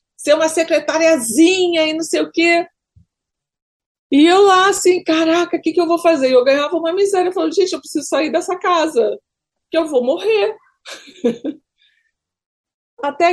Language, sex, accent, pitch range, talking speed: Portuguese, female, Brazilian, 205-320 Hz, 160 wpm